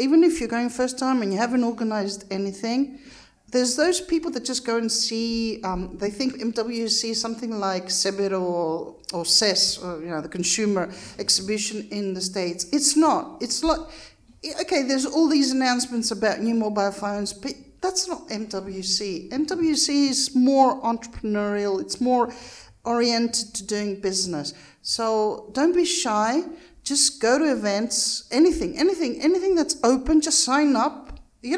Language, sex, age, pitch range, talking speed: English, female, 50-69, 200-270 Hz, 155 wpm